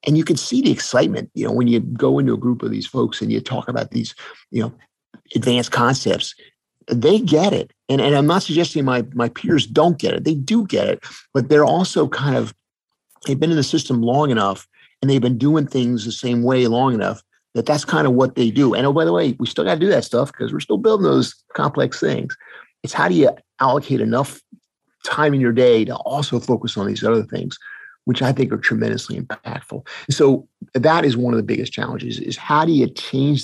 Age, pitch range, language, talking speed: 50-69, 115-140 Hz, English, 230 wpm